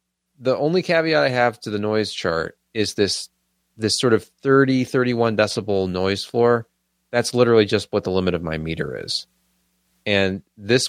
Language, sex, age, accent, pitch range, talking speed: English, male, 30-49, American, 65-110 Hz, 170 wpm